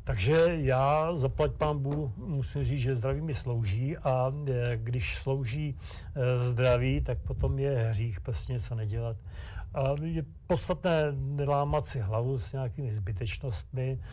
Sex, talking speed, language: male, 130 wpm, Czech